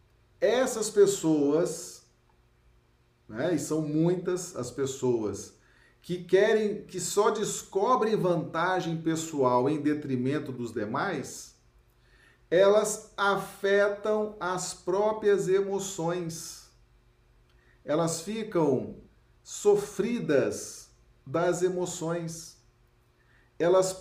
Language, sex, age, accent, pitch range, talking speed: Portuguese, male, 40-59, Brazilian, 150-195 Hz, 75 wpm